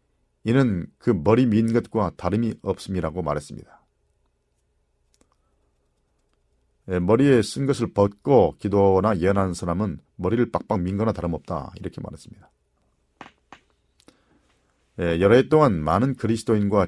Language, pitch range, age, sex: Korean, 80-110 Hz, 40-59, male